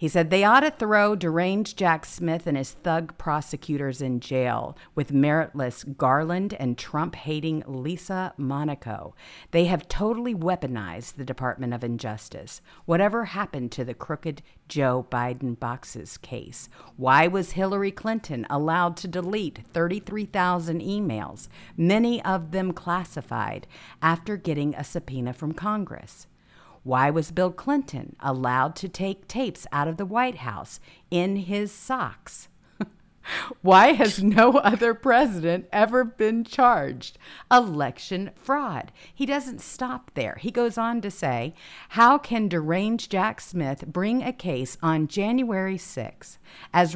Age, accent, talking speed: 50-69, American, 135 wpm